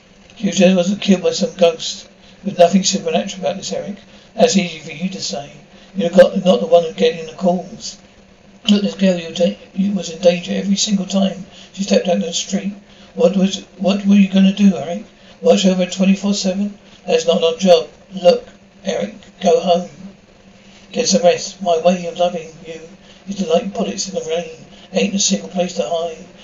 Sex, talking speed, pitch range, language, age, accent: male, 185 wpm, 175-195 Hz, English, 60-79, British